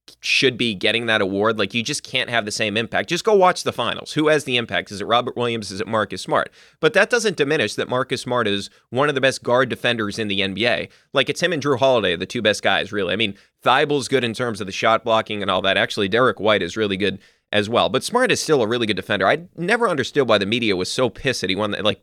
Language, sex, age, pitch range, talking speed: English, male, 30-49, 105-135 Hz, 270 wpm